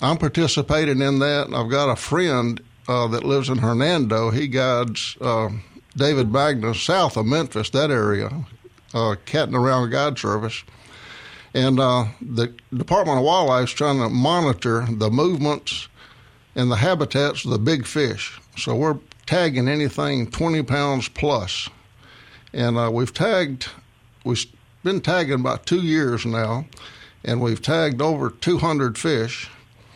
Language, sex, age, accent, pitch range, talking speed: English, male, 60-79, American, 115-140 Hz, 145 wpm